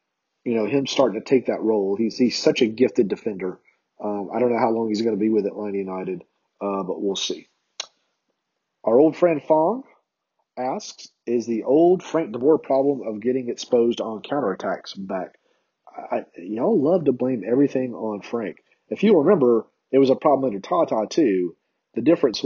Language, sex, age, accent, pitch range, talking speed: English, male, 40-59, American, 110-135 Hz, 185 wpm